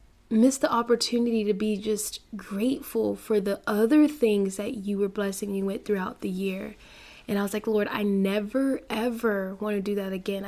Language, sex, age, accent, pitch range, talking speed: English, female, 20-39, American, 200-240 Hz, 190 wpm